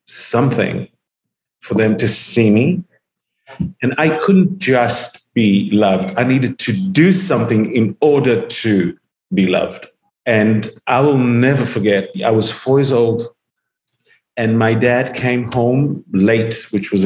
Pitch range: 110-130 Hz